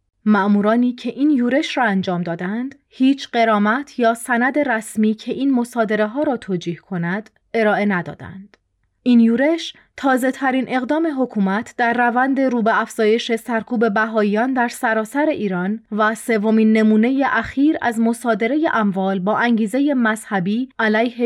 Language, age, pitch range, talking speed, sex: Persian, 30-49, 210-255 Hz, 135 wpm, female